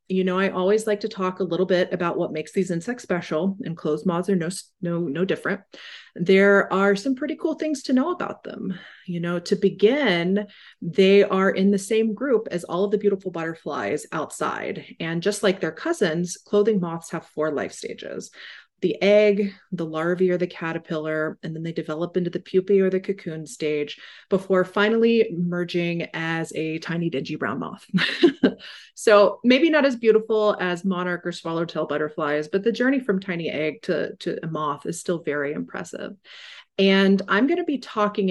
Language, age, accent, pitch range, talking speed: English, 30-49, American, 165-205 Hz, 185 wpm